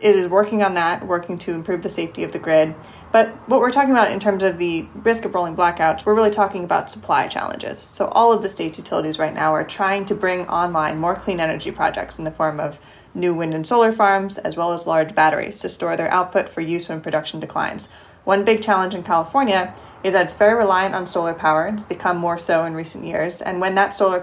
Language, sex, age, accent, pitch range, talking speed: English, female, 20-39, American, 165-195 Hz, 240 wpm